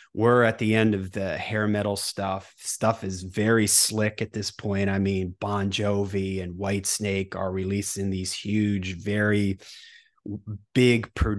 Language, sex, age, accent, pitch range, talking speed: English, male, 30-49, American, 100-115 Hz, 150 wpm